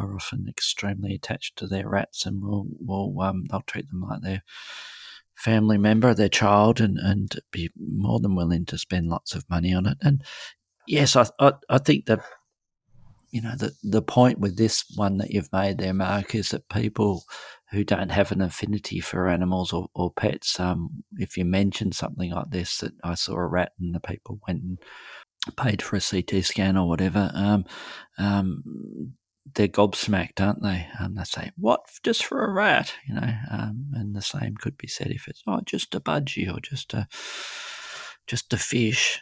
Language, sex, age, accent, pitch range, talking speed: English, male, 40-59, Australian, 95-110 Hz, 195 wpm